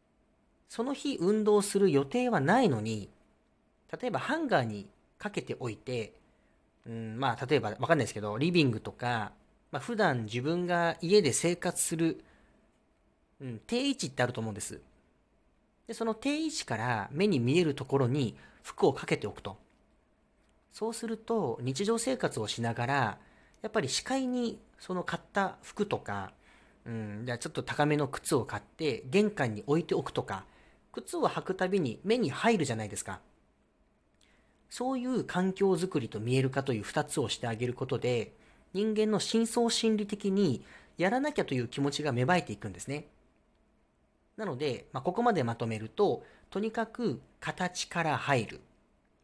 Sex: male